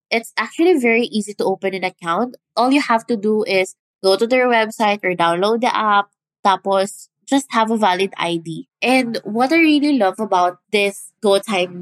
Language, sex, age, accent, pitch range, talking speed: English, female, 20-39, Filipino, 195-265 Hz, 185 wpm